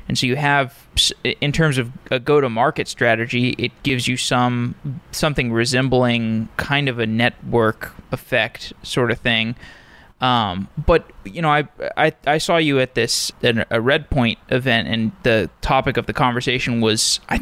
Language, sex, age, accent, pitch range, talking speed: English, male, 20-39, American, 115-140 Hz, 160 wpm